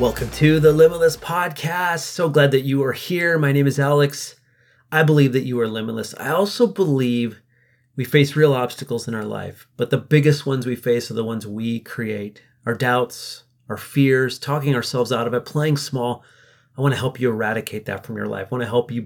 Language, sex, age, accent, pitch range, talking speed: English, male, 30-49, American, 120-145 Hz, 215 wpm